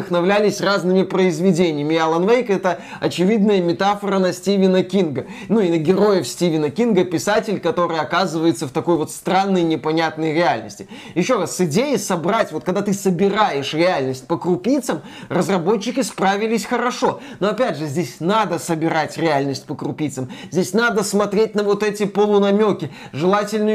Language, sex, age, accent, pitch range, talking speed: Russian, male, 20-39, native, 175-220 Hz, 145 wpm